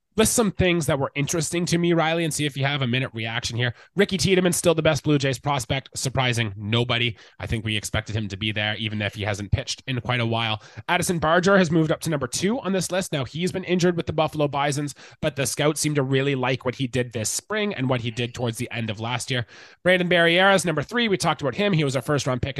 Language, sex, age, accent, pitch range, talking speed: English, male, 20-39, American, 125-170 Hz, 265 wpm